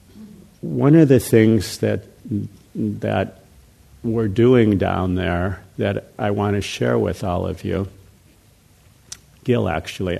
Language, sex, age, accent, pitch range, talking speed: English, male, 50-69, American, 95-115 Hz, 125 wpm